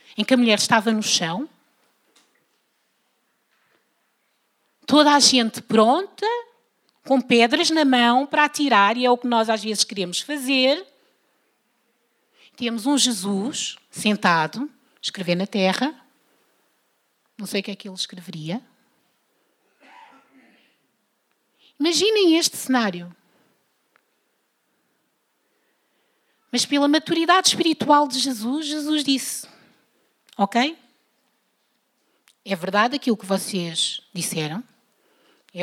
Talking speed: 100 wpm